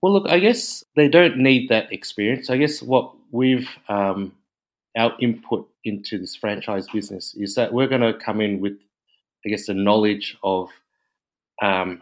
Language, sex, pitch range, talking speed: English, male, 95-115 Hz, 170 wpm